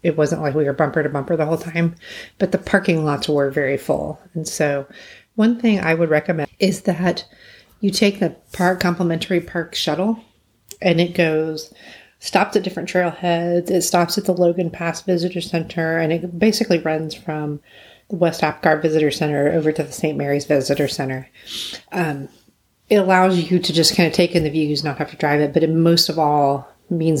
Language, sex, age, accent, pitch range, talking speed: English, female, 30-49, American, 145-175 Hz, 195 wpm